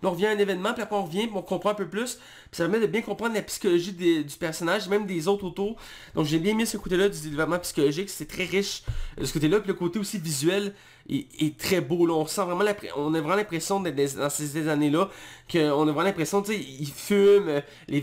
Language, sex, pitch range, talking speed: French, male, 145-195 Hz, 250 wpm